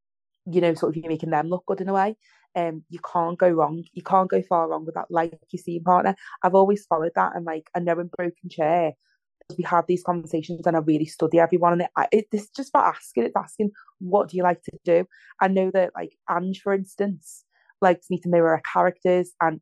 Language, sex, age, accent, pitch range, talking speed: English, female, 30-49, British, 165-180 Hz, 230 wpm